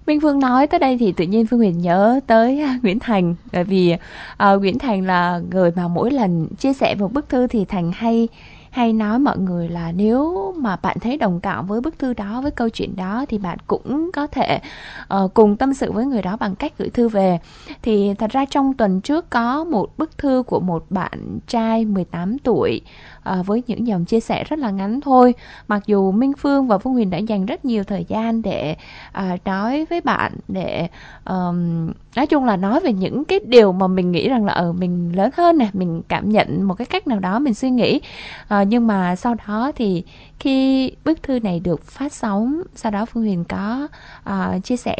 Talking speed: 215 wpm